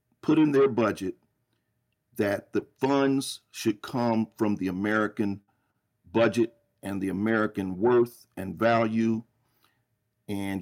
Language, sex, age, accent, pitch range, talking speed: English, male, 50-69, American, 105-120 Hz, 115 wpm